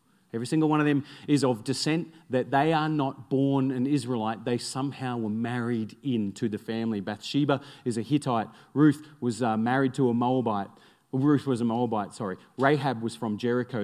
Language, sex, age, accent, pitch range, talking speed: English, male, 40-59, Australian, 120-160 Hz, 180 wpm